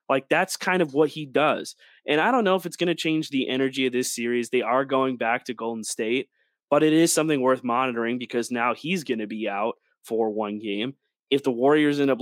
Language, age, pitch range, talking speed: English, 20-39, 115-145 Hz, 240 wpm